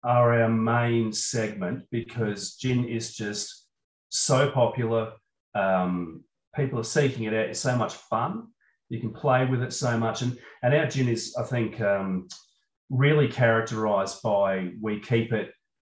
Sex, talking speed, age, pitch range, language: male, 155 wpm, 30-49, 110-130 Hz, English